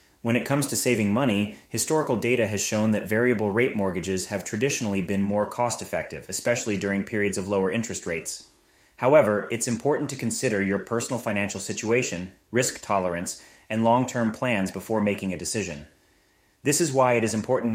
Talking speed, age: 170 wpm, 30-49